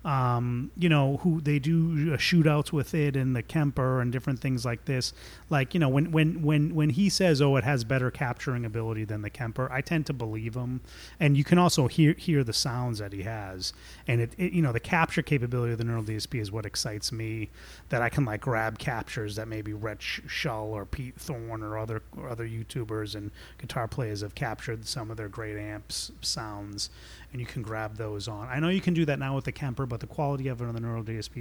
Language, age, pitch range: English, 30-49, 110-145 Hz